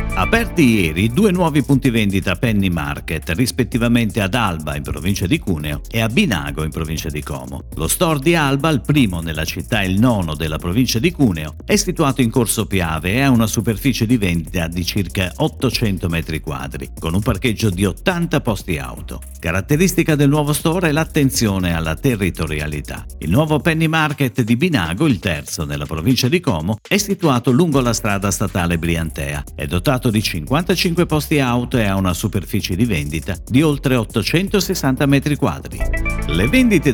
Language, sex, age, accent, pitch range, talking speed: Italian, male, 50-69, native, 85-140 Hz, 170 wpm